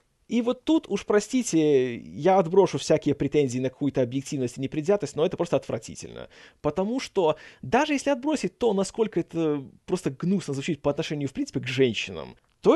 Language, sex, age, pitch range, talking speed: Russian, male, 20-39, 140-205 Hz, 170 wpm